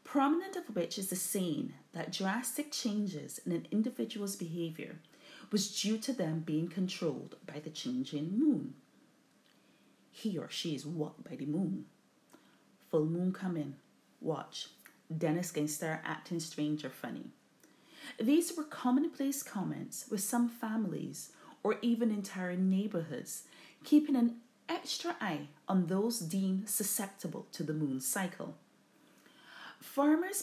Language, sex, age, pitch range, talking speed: English, female, 30-49, 165-245 Hz, 130 wpm